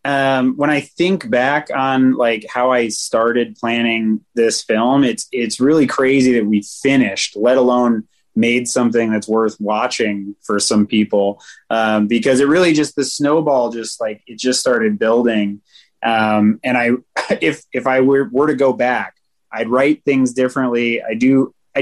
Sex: male